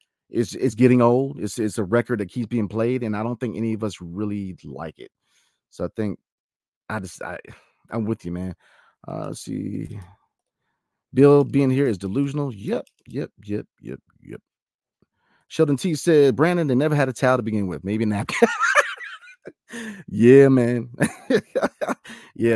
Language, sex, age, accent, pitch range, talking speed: English, male, 30-49, American, 100-130 Hz, 165 wpm